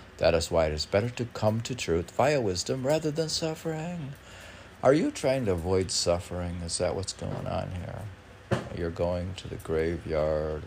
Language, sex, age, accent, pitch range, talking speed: English, male, 60-79, American, 85-110 Hz, 180 wpm